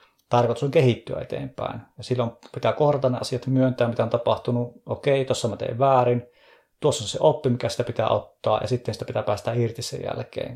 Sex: male